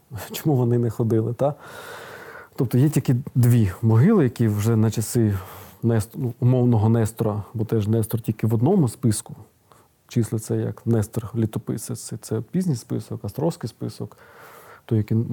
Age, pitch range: 40-59, 110-130 Hz